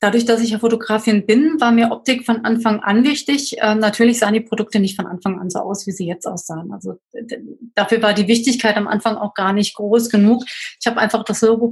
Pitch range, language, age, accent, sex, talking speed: 210-235 Hz, German, 30-49, German, female, 225 wpm